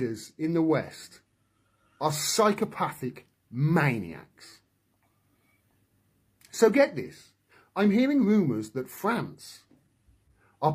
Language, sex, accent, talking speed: English, male, British, 85 wpm